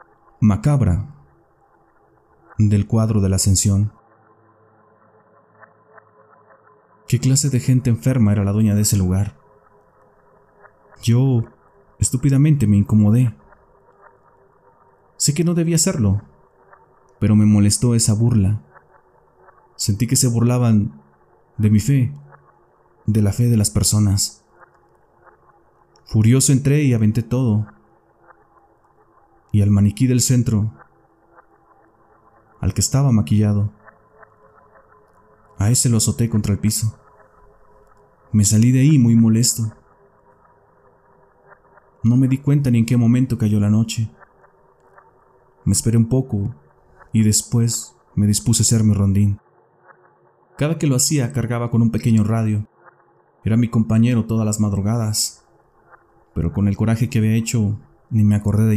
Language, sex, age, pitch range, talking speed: Spanish, male, 30-49, 105-120 Hz, 125 wpm